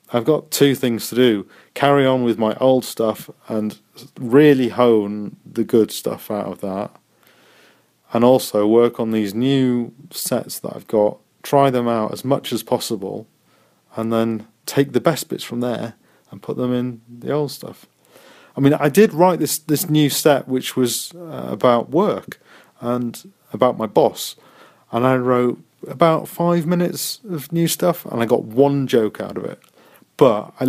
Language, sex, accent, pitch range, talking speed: English, male, British, 115-145 Hz, 175 wpm